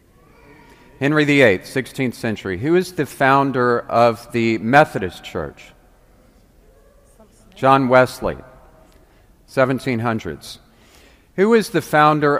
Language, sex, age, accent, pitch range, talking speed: English, male, 50-69, American, 110-140 Hz, 90 wpm